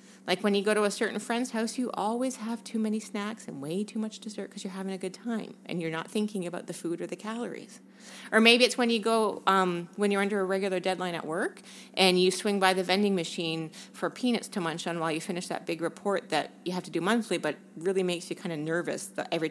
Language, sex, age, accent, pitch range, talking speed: English, female, 30-49, American, 165-220 Hz, 255 wpm